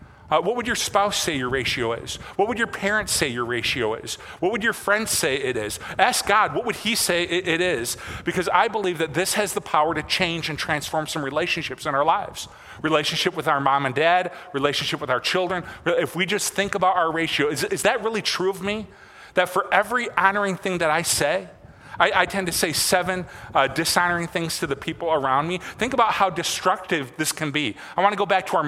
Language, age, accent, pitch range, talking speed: English, 40-59, American, 150-195 Hz, 230 wpm